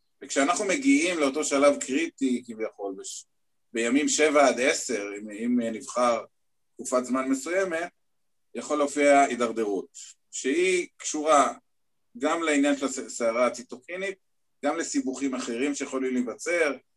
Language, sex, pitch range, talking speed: Hebrew, male, 125-190 Hz, 115 wpm